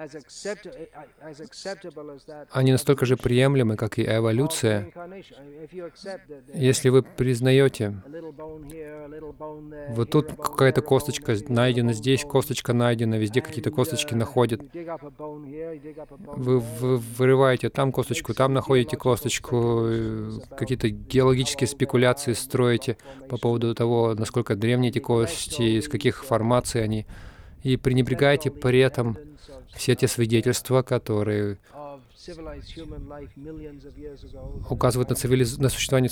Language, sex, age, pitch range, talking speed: Russian, male, 20-39, 115-145 Hz, 95 wpm